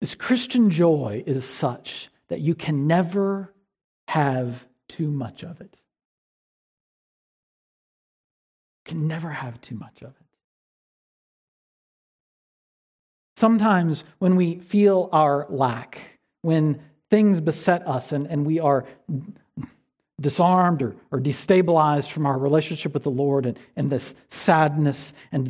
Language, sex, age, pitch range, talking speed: English, male, 50-69, 135-185 Hz, 120 wpm